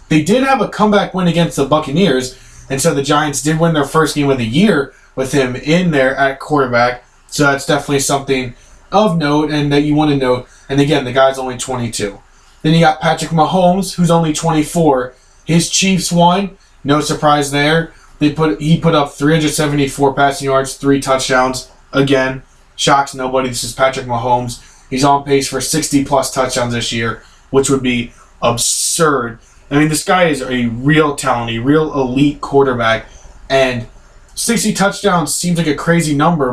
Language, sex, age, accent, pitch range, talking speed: English, male, 20-39, American, 130-160 Hz, 175 wpm